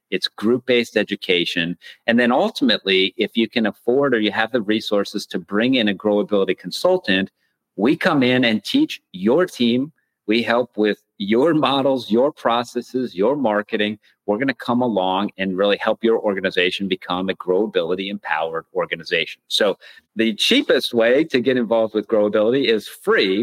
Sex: male